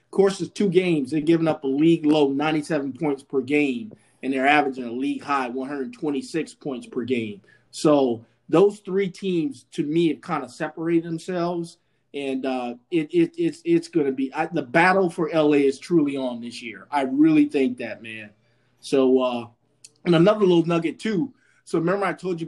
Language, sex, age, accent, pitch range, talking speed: English, male, 30-49, American, 135-170 Hz, 200 wpm